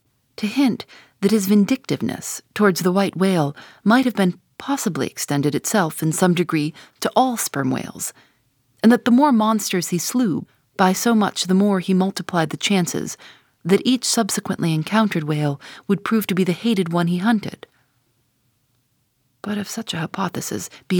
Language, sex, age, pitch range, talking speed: English, female, 30-49, 150-220 Hz, 165 wpm